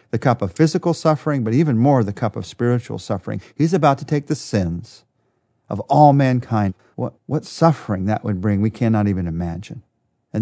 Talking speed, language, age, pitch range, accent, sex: 190 wpm, English, 40-59, 105-135 Hz, American, male